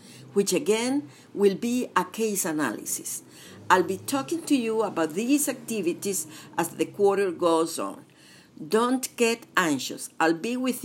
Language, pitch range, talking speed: English, 185-255 Hz, 145 wpm